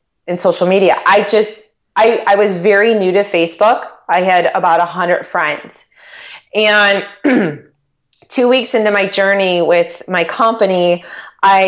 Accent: American